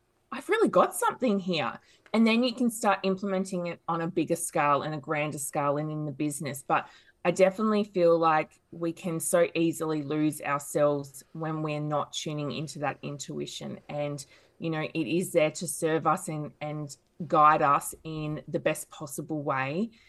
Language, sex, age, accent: English, female, 20-39, Australian